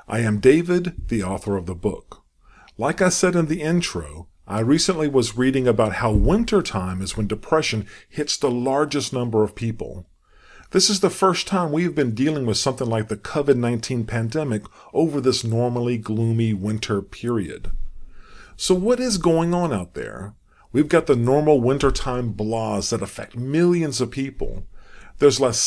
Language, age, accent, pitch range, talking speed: English, 40-59, American, 100-145 Hz, 165 wpm